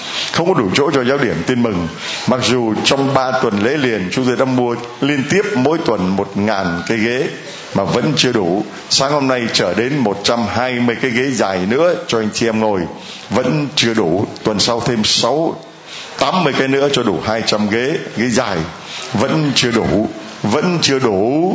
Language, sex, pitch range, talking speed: Vietnamese, male, 110-135 Hz, 205 wpm